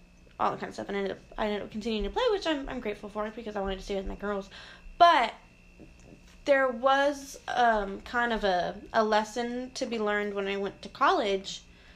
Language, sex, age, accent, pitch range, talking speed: English, female, 10-29, American, 195-260 Hz, 225 wpm